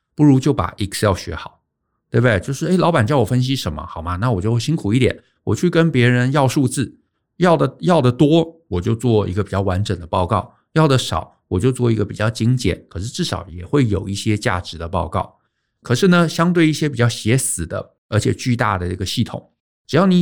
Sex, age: male, 50-69